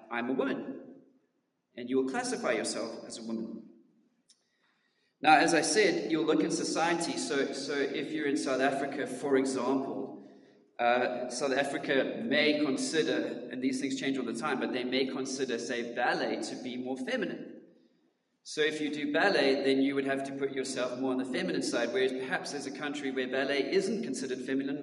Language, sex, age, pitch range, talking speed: English, male, 30-49, 125-150 Hz, 185 wpm